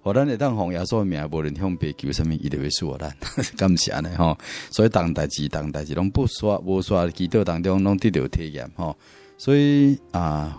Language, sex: Chinese, male